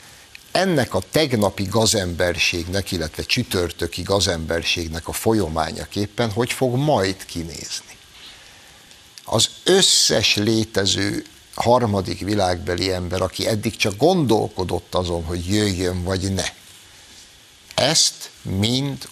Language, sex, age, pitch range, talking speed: Hungarian, male, 60-79, 90-120 Hz, 95 wpm